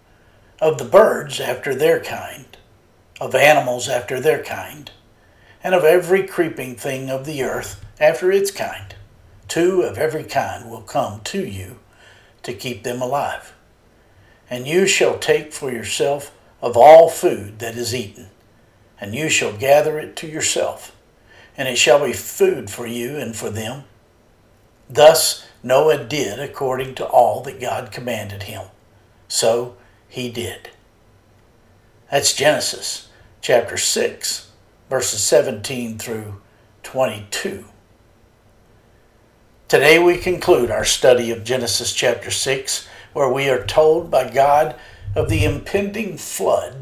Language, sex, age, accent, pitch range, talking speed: English, male, 50-69, American, 110-155 Hz, 130 wpm